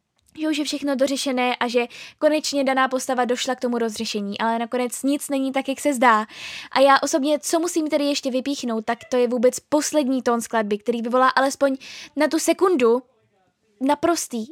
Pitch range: 235-285 Hz